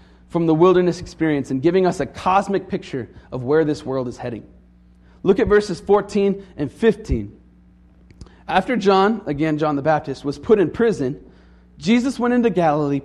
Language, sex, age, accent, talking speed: English, male, 30-49, American, 165 wpm